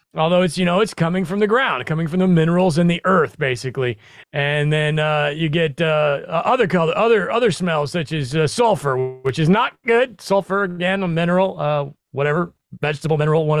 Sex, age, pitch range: male, 30-49, 145-190 Hz